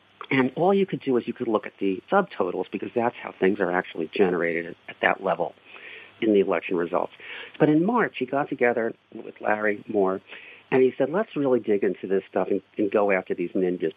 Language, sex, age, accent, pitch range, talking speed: English, male, 50-69, American, 105-160 Hz, 215 wpm